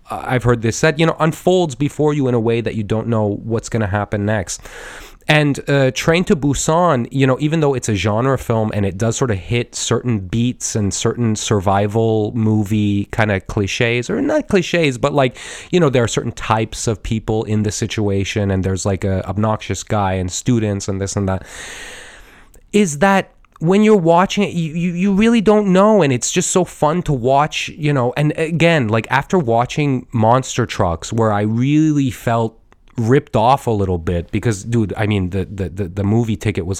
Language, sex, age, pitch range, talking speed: English, male, 30-49, 105-150 Hz, 200 wpm